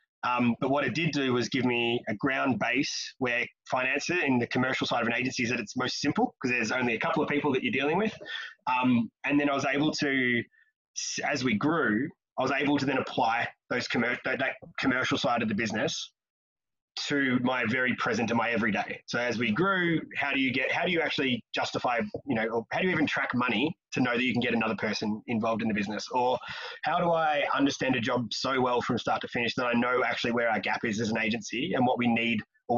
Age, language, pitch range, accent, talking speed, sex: 20-39, English, 115-145 Hz, Australian, 240 wpm, male